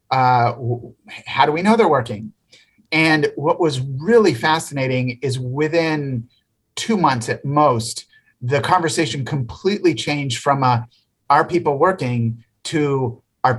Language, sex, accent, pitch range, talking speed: English, male, American, 125-145 Hz, 130 wpm